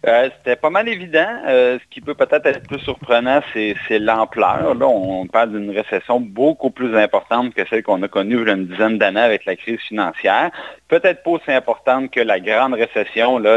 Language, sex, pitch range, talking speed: French, male, 100-135 Hz, 210 wpm